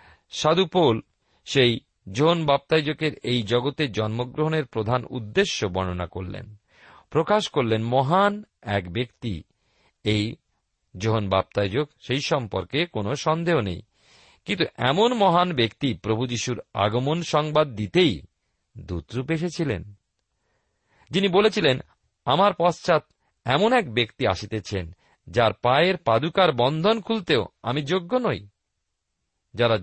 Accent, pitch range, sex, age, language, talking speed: native, 105-165 Hz, male, 50-69, Bengali, 105 wpm